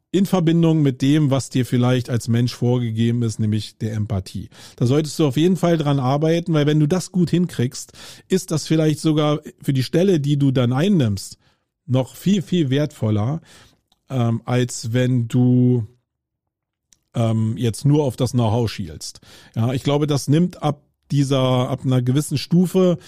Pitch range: 120-150 Hz